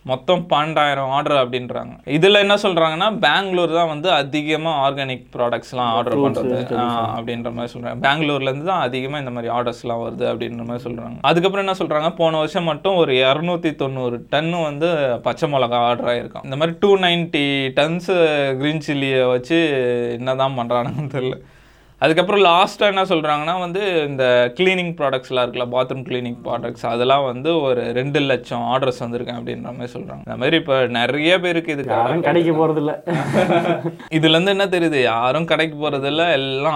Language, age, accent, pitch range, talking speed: Tamil, 20-39, native, 125-165 Hz, 150 wpm